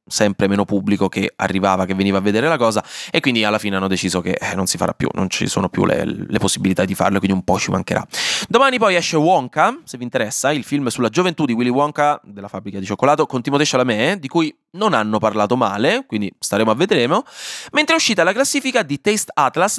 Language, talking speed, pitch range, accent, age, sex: Italian, 230 wpm, 105-160 Hz, native, 20-39, male